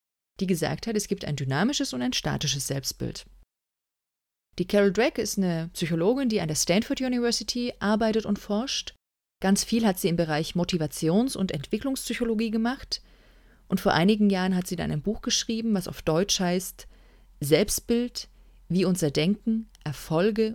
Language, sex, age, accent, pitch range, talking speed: German, female, 30-49, German, 165-220 Hz, 160 wpm